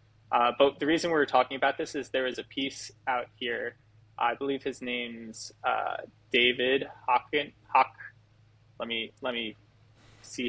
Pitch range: 110-130 Hz